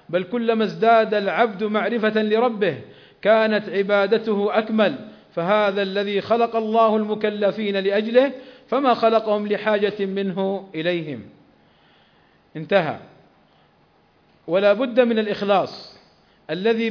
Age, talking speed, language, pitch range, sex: 40-59, 90 wpm, Arabic, 200-230 Hz, male